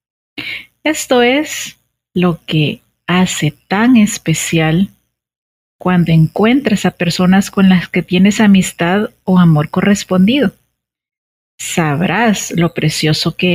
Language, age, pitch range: Spanish, 40-59, 170-220 Hz